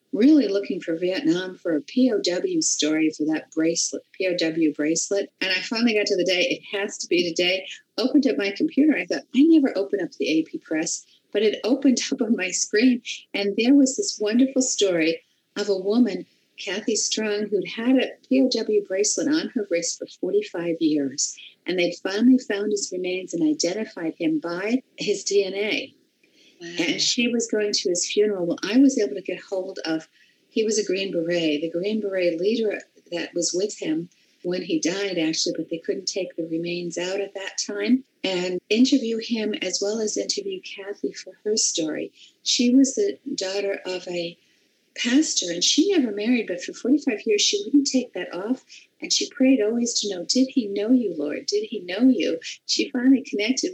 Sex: female